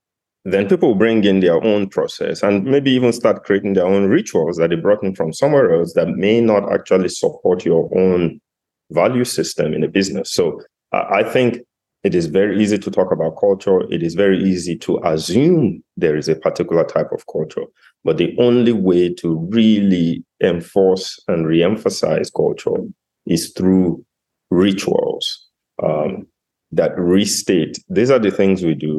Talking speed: 170 wpm